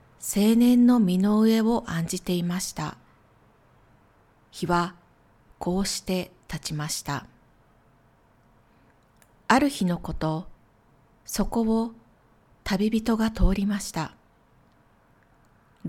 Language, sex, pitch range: Japanese, female, 160-215 Hz